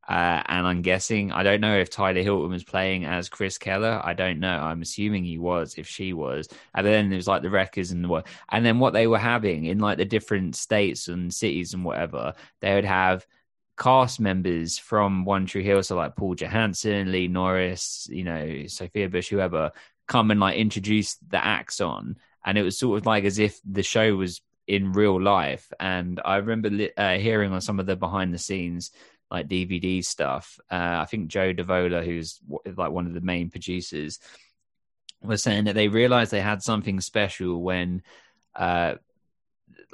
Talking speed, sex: 190 wpm, male